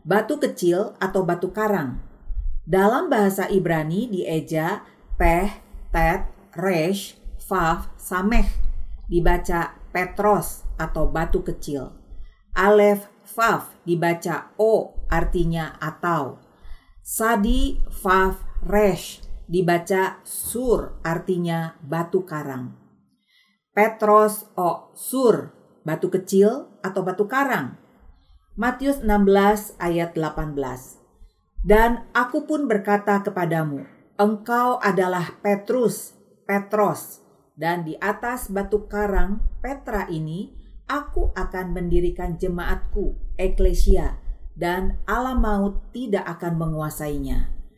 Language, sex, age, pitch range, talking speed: Indonesian, female, 50-69, 160-210 Hz, 90 wpm